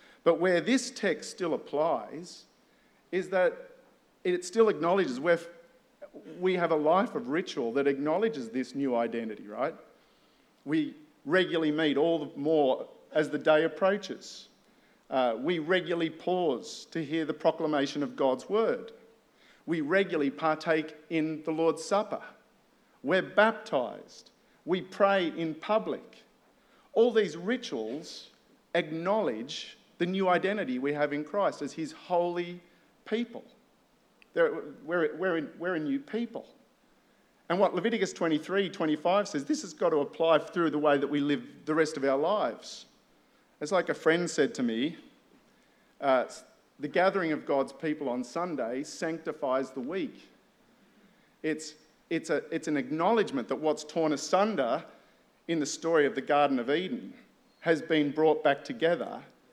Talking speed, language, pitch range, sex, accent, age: 140 wpm, English, 155-215 Hz, male, Australian, 50-69